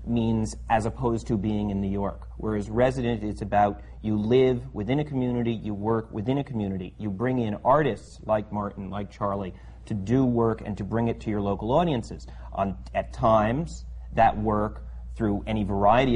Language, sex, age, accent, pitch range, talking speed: English, male, 30-49, American, 100-115 Hz, 180 wpm